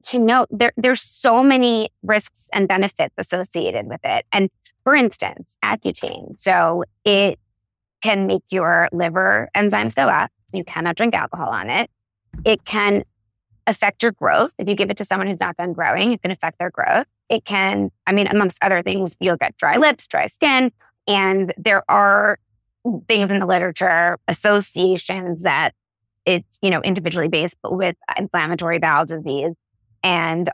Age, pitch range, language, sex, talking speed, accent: 20-39, 165-205 Hz, English, female, 160 wpm, American